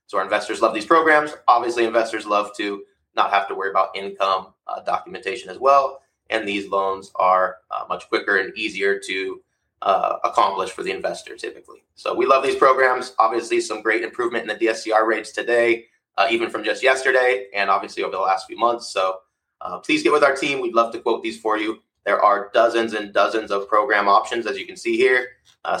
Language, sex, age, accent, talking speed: English, male, 20-39, American, 210 wpm